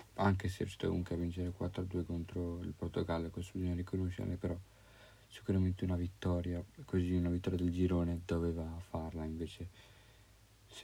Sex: male